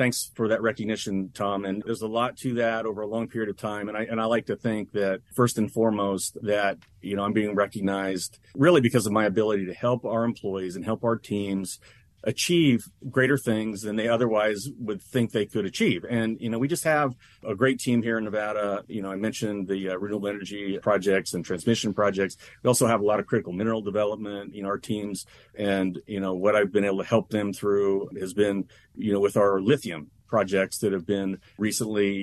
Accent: American